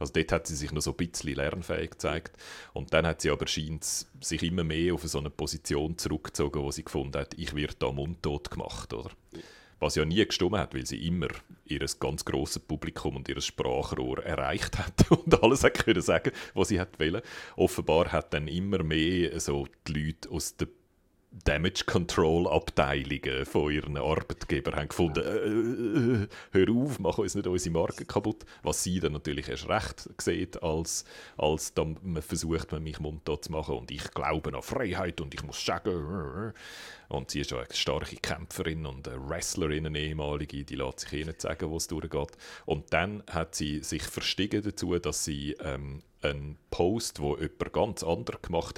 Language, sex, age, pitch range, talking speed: German, male, 40-59, 70-85 Hz, 175 wpm